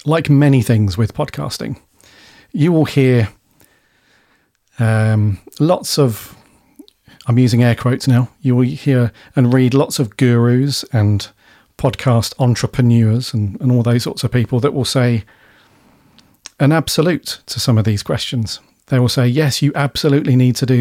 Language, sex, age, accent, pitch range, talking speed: English, male, 40-59, British, 115-145 Hz, 155 wpm